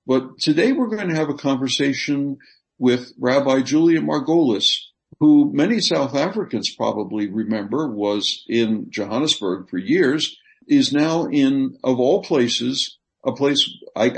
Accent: American